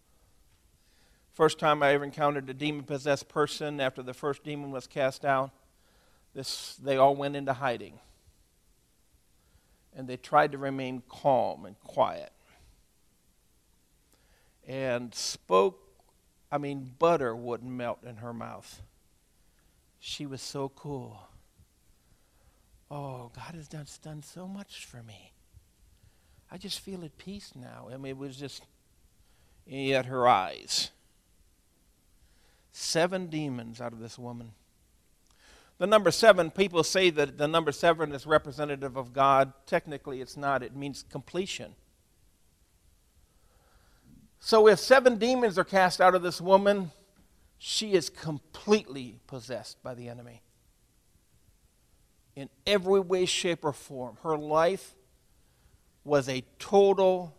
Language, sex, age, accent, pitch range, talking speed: English, male, 50-69, American, 110-155 Hz, 125 wpm